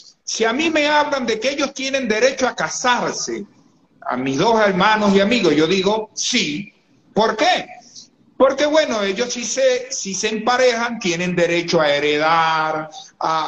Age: 50-69